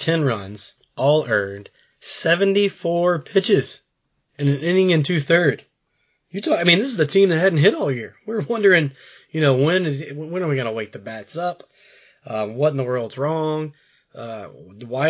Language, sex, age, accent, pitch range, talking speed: English, male, 20-39, American, 125-155 Hz, 180 wpm